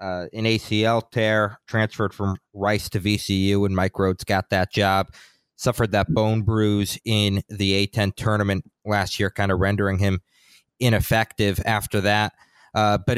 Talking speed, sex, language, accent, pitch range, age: 155 wpm, male, English, American, 100-115 Hz, 30-49